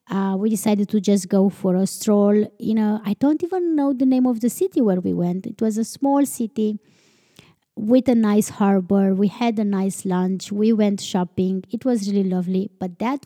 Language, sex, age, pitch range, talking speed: English, female, 20-39, 195-255 Hz, 210 wpm